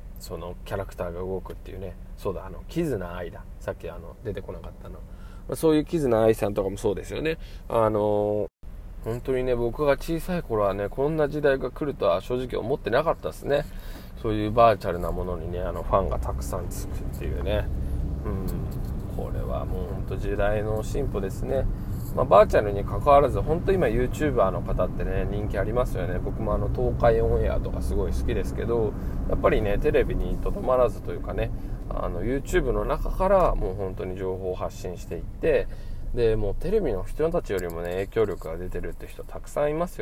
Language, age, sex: Japanese, 20-39, male